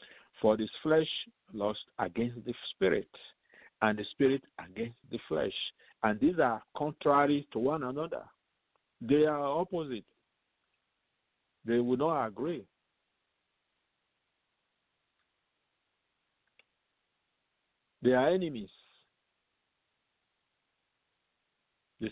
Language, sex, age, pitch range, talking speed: English, male, 50-69, 105-135 Hz, 80 wpm